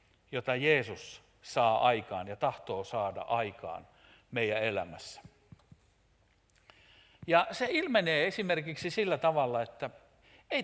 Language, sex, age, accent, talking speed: Finnish, male, 60-79, native, 100 wpm